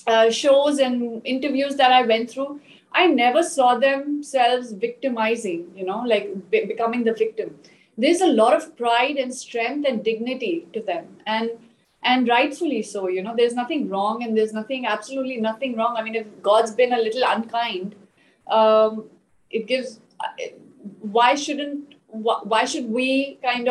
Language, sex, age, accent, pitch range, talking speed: English, female, 30-49, Indian, 220-270 Hz, 155 wpm